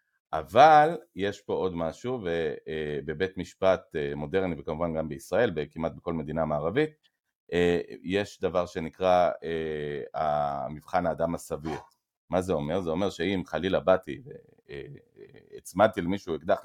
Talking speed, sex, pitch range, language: 115 wpm, male, 85-130 Hz, Hebrew